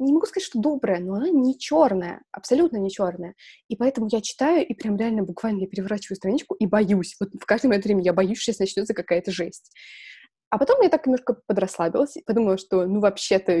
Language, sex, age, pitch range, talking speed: Russian, female, 20-39, 180-235 Hz, 205 wpm